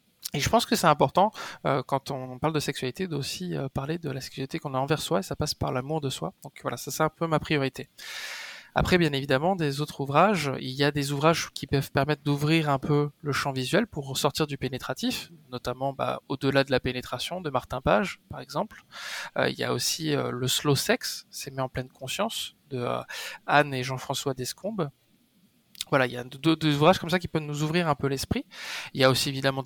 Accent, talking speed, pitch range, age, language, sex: French, 230 wpm, 130-150 Hz, 20-39, French, male